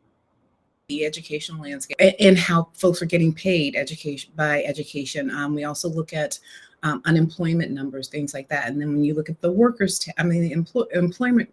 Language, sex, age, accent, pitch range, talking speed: English, female, 30-49, American, 135-165 Hz, 195 wpm